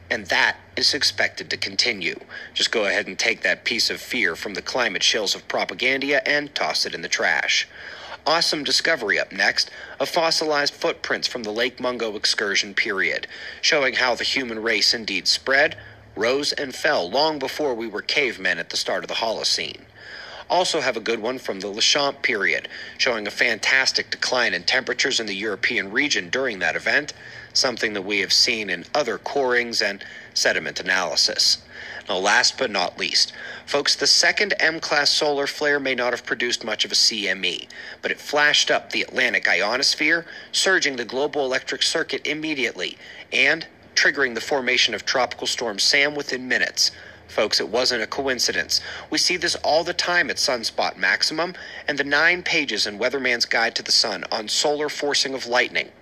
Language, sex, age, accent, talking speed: English, male, 40-59, American, 175 wpm